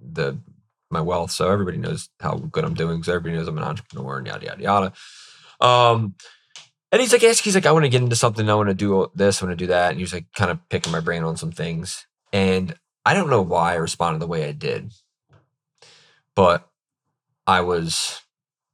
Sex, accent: male, American